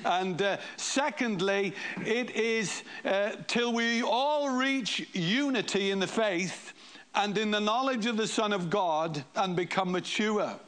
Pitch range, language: 190-225 Hz, English